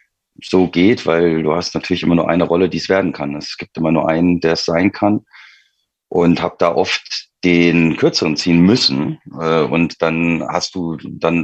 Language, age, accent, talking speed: German, 40-59, German, 190 wpm